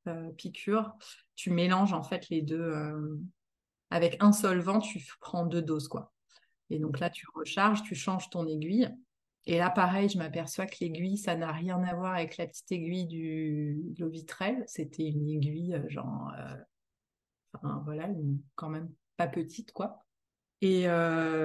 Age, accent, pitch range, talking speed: 30-49, French, 165-215 Hz, 170 wpm